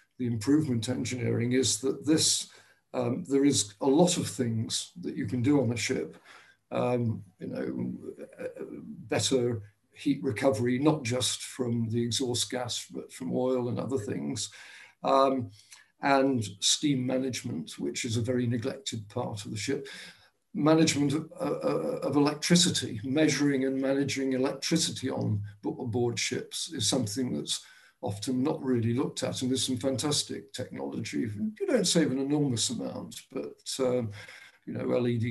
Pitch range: 120-135 Hz